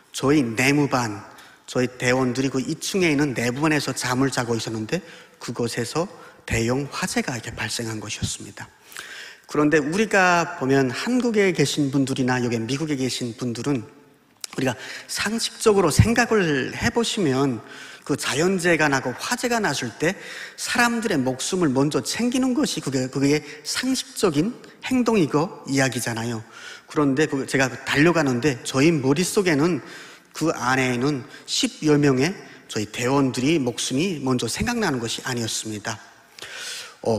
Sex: male